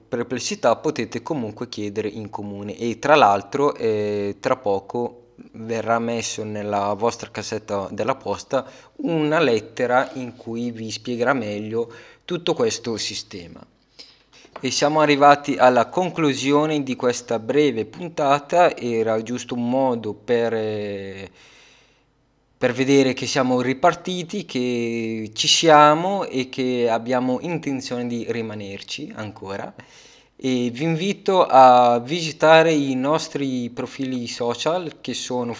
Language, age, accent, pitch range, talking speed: Italian, 20-39, native, 115-150 Hz, 115 wpm